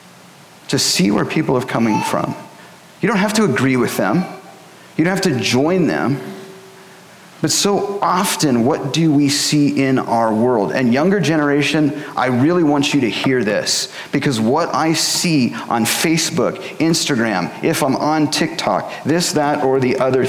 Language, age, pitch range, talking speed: English, 40-59, 130-170 Hz, 165 wpm